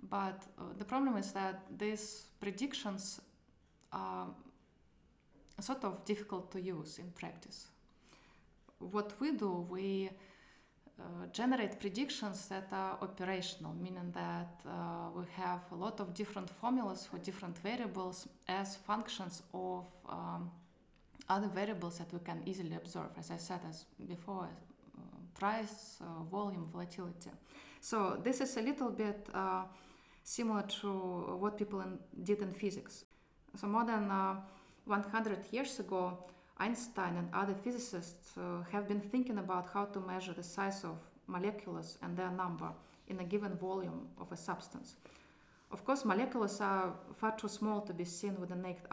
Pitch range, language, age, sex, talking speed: 180-210 Hz, English, 20-39, female, 145 wpm